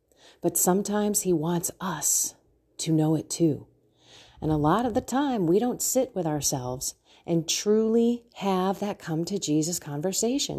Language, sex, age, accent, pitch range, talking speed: English, female, 40-59, American, 170-250 Hz, 160 wpm